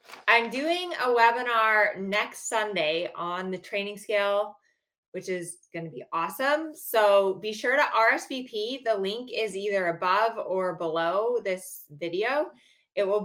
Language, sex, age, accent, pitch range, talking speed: English, female, 20-39, American, 185-230 Hz, 145 wpm